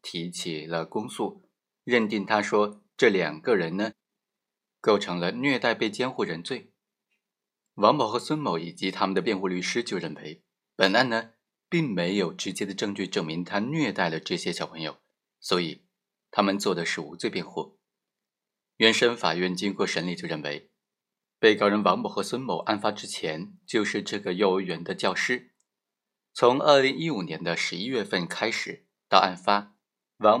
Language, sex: Chinese, male